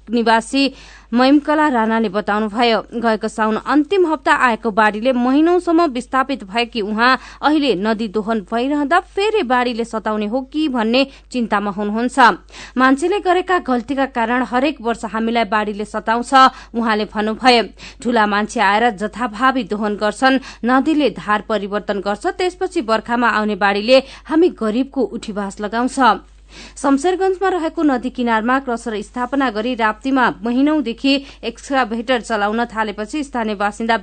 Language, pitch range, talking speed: English, 215-265 Hz, 125 wpm